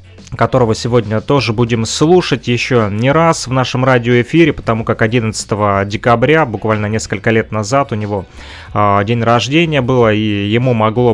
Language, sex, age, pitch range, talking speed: Russian, male, 20-39, 105-125 Hz, 150 wpm